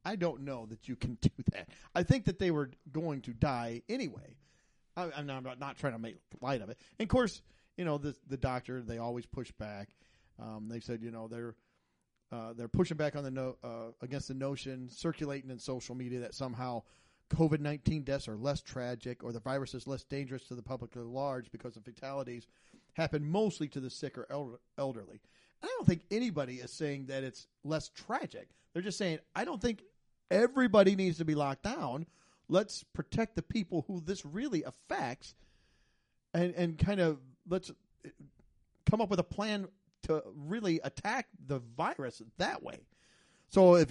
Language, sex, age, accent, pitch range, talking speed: English, male, 40-59, American, 125-175 Hz, 195 wpm